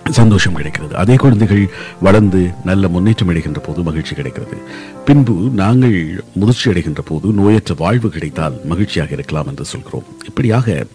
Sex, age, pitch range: male, 50-69, 85-115 Hz